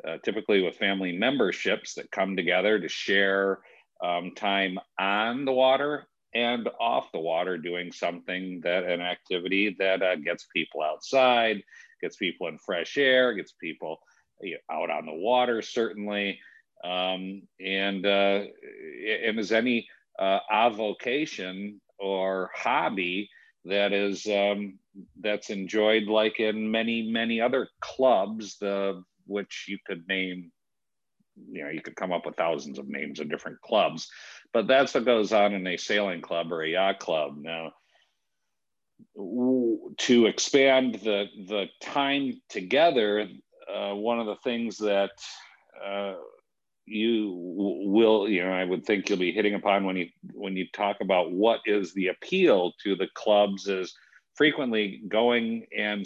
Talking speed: 145 wpm